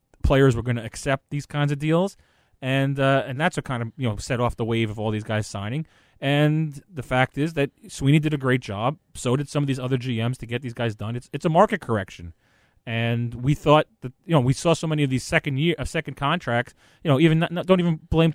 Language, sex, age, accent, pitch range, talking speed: English, male, 30-49, American, 115-145 Hz, 250 wpm